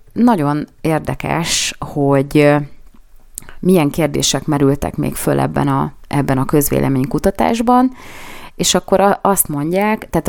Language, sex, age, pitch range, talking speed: Hungarian, female, 30-49, 145-175 Hz, 100 wpm